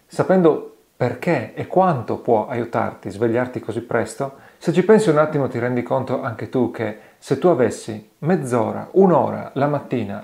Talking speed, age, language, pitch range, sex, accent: 165 wpm, 40-59, Italian, 115-155 Hz, male, native